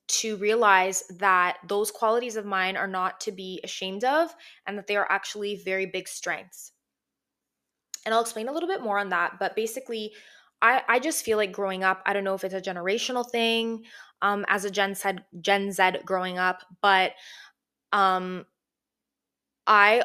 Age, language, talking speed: 20-39, English, 175 wpm